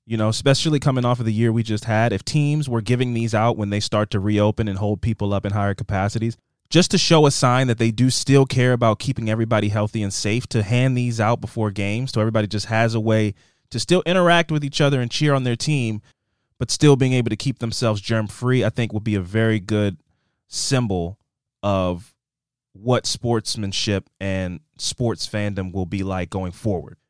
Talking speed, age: 210 wpm, 20-39